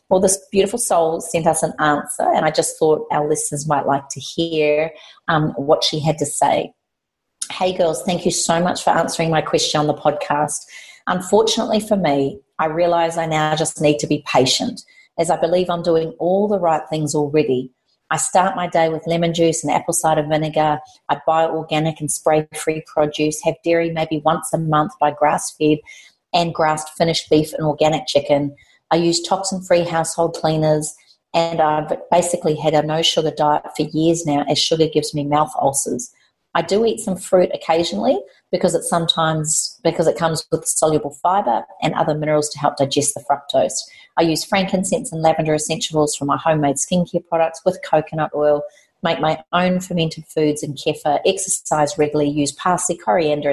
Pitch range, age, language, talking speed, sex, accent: 150-170 Hz, 40-59, English, 180 wpm, female, Australian